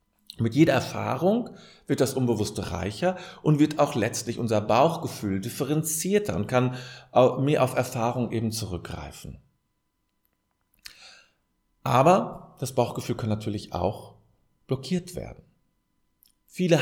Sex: male